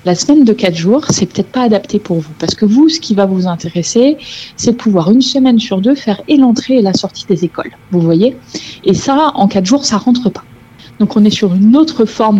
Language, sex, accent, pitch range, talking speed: French, female, French, 175-245 Hz, 245 wpm